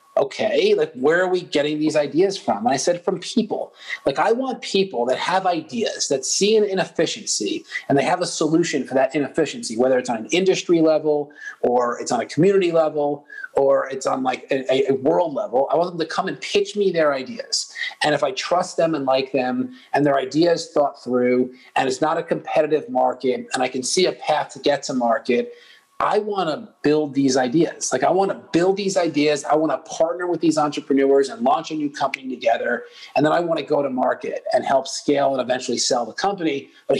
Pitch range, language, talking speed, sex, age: 140-185 Hz, English, 215 wpm, male, 30-49